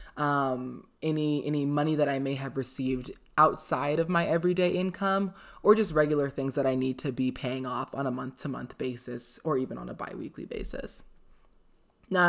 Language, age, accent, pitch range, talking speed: English, 20-39, American, 130-155 Hz, 175 wpm